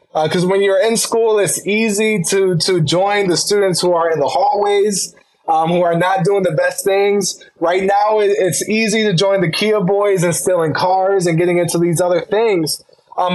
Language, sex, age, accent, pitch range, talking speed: English, male, 20-39, American, 170-210 Hz, 200 wpm